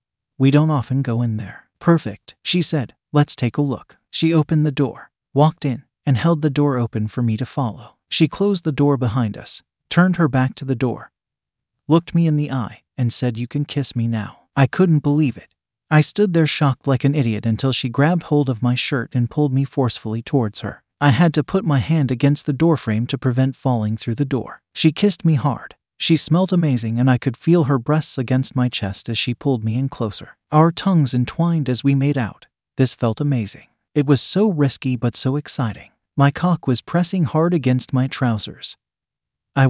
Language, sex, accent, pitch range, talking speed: English, male, American, 125-155 Hz, 210 wpm